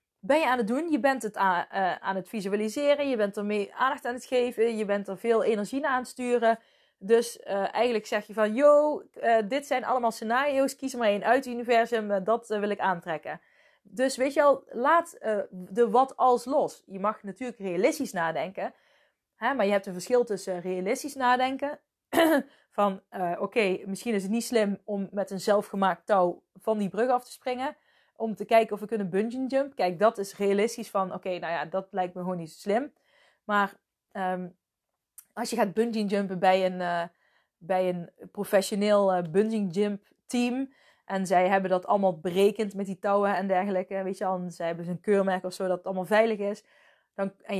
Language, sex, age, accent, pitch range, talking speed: Dutch, female, 20-39, Dutch, 190-240 Hz, 210 wpm